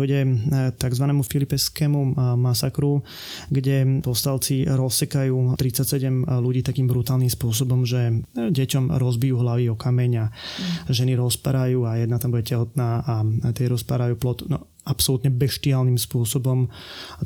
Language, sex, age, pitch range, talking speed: Slovak, male, 20-39, 125-140 Hz, 120 wpm